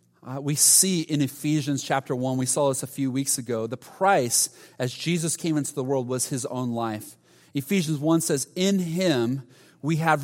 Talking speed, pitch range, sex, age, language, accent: 195 wpm, 120-165 Hz, male, 40-59, English, American